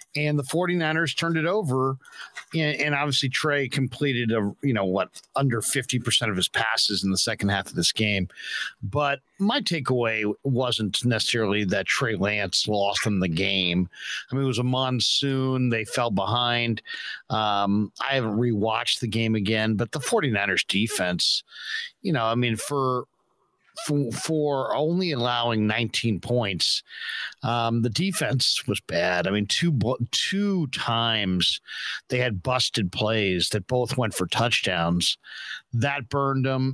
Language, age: English, 50-69